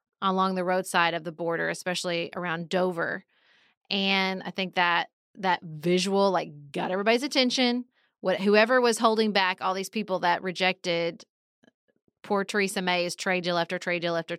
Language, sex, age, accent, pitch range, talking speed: English, female, 30-49, American, 180-225 Hz, 160 wpm